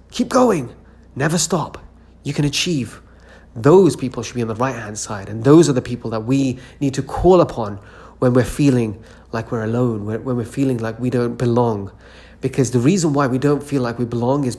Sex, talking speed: male, 210 wpm